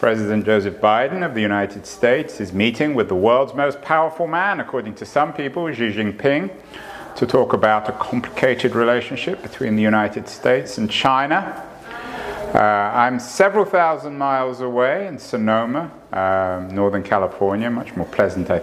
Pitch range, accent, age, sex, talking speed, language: 110-145 Hz, British, 50-69, male, 155 wpm, English